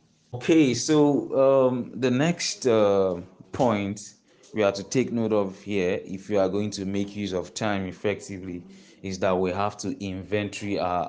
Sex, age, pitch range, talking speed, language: male, 20-39, 95-110 Hz, 170 wpm, English